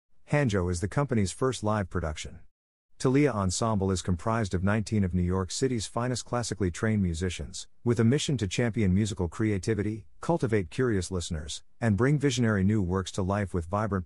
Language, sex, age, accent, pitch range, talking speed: English, male, 50-69, American, 90-115 Hz, 170 wpm